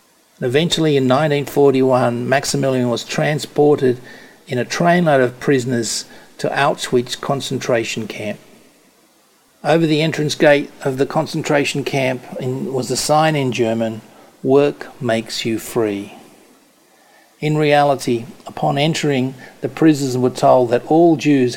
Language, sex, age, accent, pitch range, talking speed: English, male, 50-69, Australian, 120-140 Hz, 120 wpm